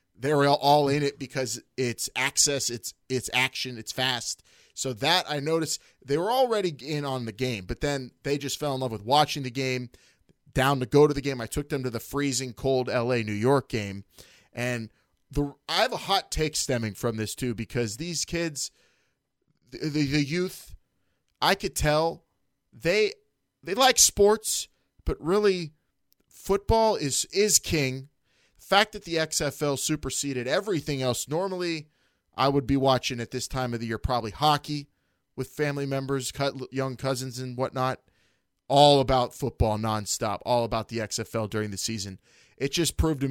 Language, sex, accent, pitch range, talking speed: English, male, American, 120-150 Hz, 175 wpm